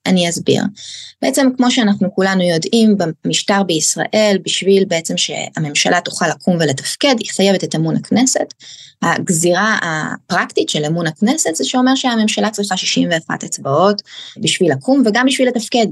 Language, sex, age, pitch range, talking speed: Hebrew, female, 20-39, 175-250 Hz, 135 wpm